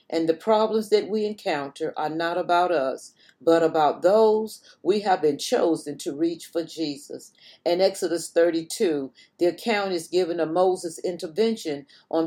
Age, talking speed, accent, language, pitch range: 40-59, 155 wpm, American, English, 160-215 Hz